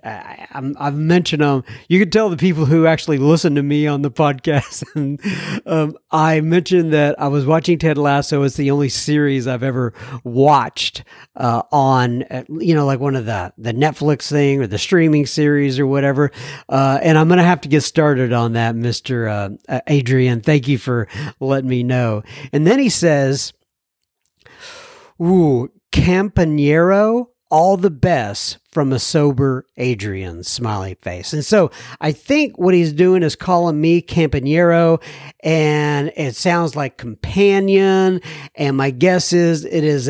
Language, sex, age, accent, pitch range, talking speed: English, male, 50-69, American, 130-175 Hz, 160 wpm